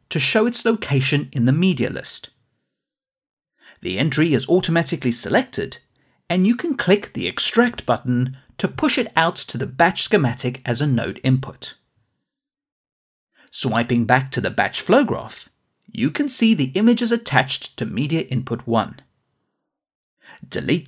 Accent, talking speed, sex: British, 145 wpm, male